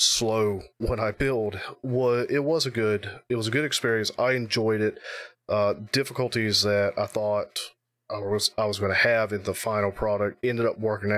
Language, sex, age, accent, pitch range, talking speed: English, male, 30-49, American, 100-120 Hz, 190 wpm